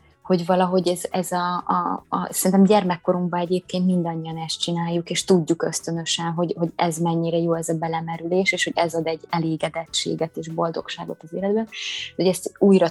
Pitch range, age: 170-190 Hz, 20-39